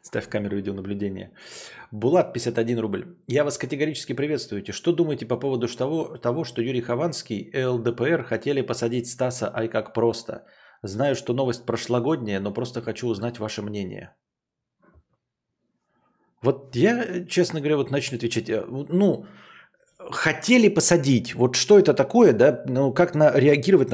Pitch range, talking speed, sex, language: 115-150 Hz, 140 wpm, male, English